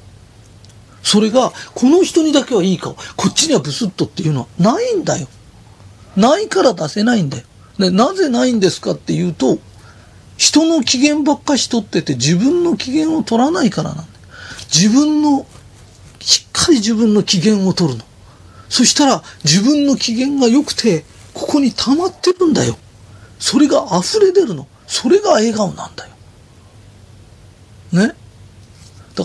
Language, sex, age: Japanese, male, 40-59